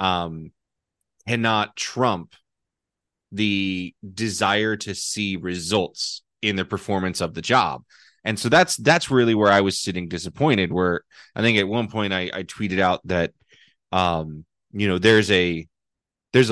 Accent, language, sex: American, English, male